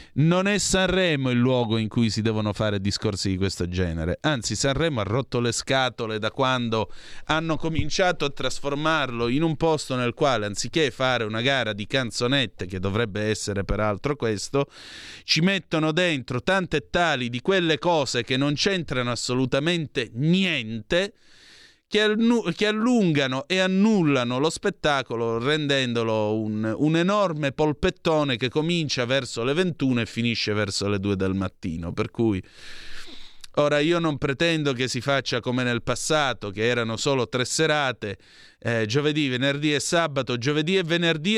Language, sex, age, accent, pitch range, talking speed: Italian, male, 30-49, native, 115-155 Hz, 150 wpm